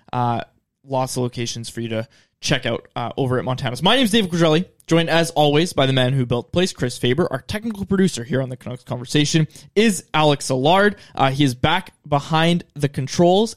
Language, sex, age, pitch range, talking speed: English, male, 20-39, 130-165 Hz, 210 wpm